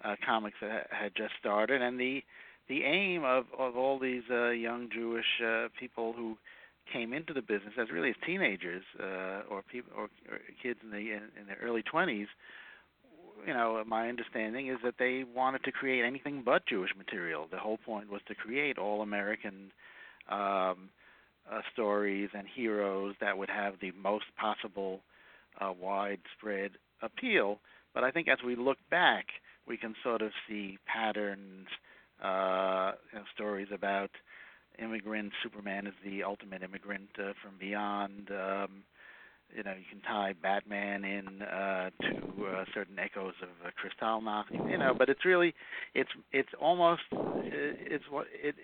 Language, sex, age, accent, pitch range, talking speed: English, male, 60-79, American, 100-125 Hz, 160 wpm